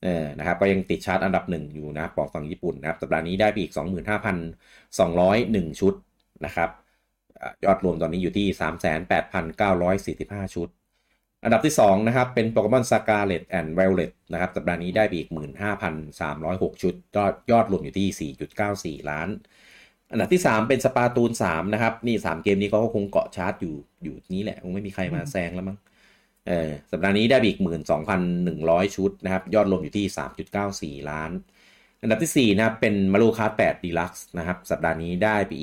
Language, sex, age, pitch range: Thai, male, 30-49, 85-105 Hz